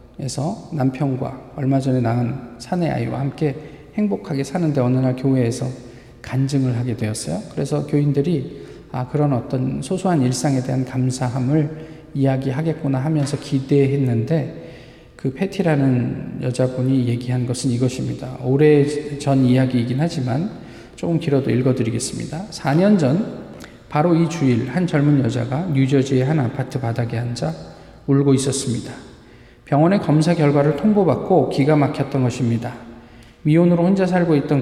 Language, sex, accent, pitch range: Korean, male, native, 125-155 Hz